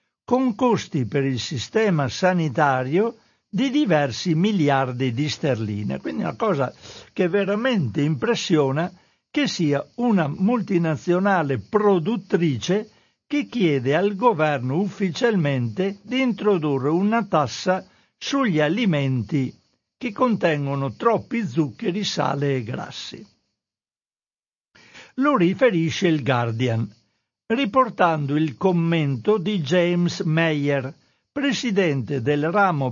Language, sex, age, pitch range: Italian, male, 60-79, 140-205 Hz